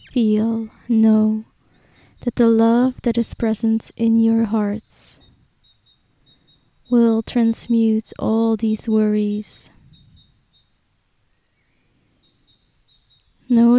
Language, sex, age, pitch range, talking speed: English, female, 20-39, 215-230 Hz, 75 wpm